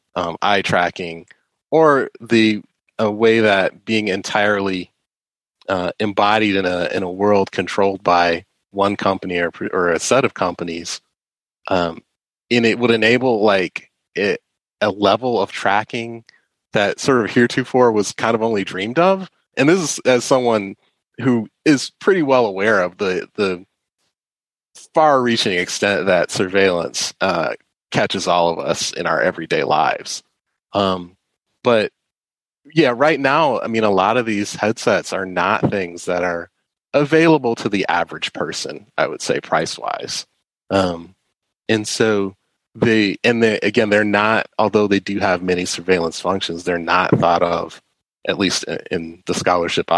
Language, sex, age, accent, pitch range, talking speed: English, male, 30-49, American, 90-115 Hz, 150 wpm